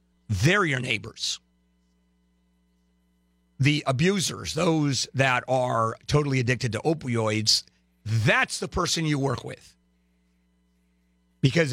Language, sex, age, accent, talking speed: English, male, 50-69, American, 95 wpm